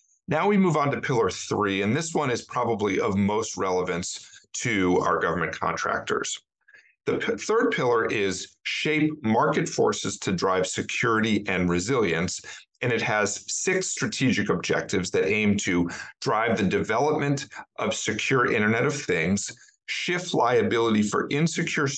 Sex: male